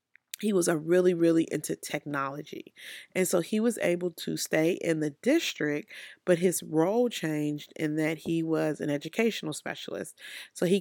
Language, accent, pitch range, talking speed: English, American, 160-200 Hz, 160 wpm